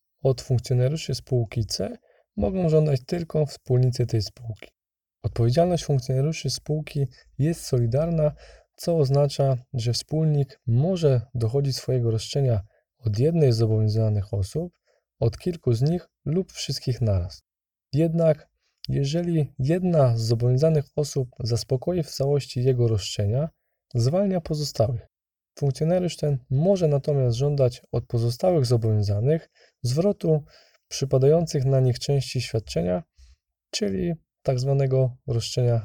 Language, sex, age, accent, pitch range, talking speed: Polish, male, 20-39, native, 115-155 Hz, 110 wpm